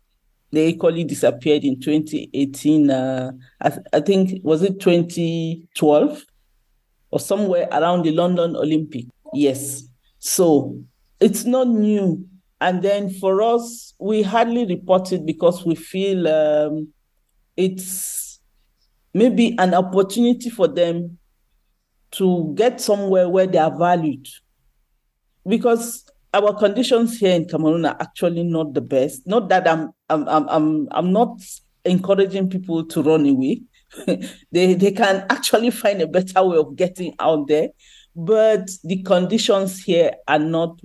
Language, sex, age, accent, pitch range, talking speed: English, male, 50-69, Nigerian, 155-200 Hz, 130 wpm